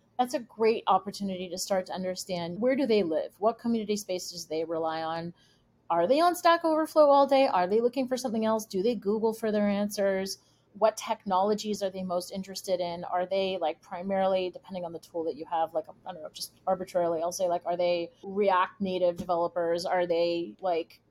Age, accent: 30-49, American